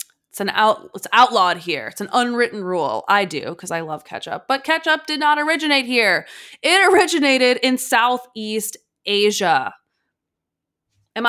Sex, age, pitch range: female, 20-39, 185-230 Hz